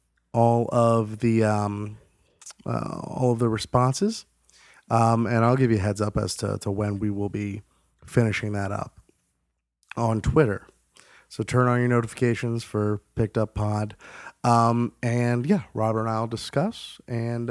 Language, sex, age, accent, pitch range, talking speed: English, male, 30-49, American, 105-125 Hz, 160 wpm